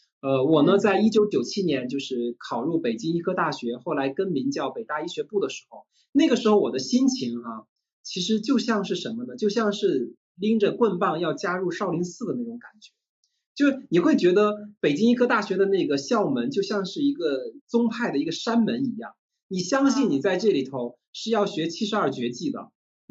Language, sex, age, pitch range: Chinese, male, 20-39, 165-235 Hz